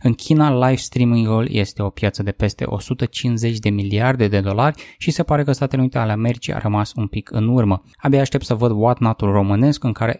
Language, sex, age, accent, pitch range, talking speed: Romanian, male, 20-39, native, 105-130 Hz, 205 wpm